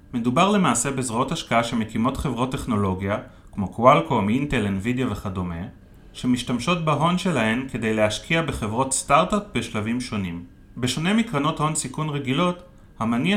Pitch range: 105-145 Hz